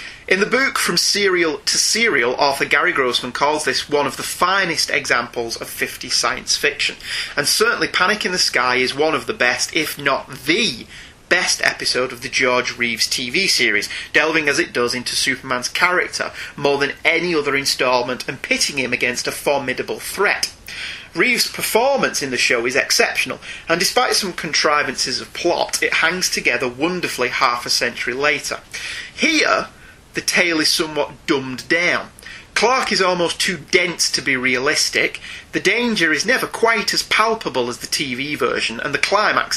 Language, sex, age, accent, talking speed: English, male, 30-49, British, 170 wpm